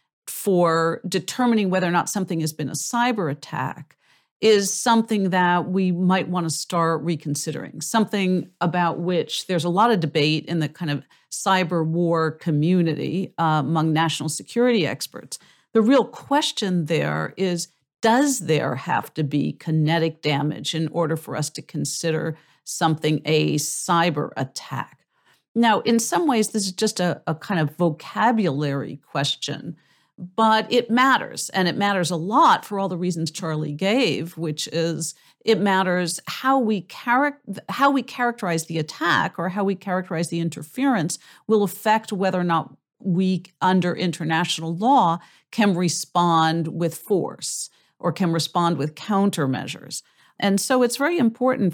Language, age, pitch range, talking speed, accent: English, 50-69, 160-200 Hz, 150 wpm, American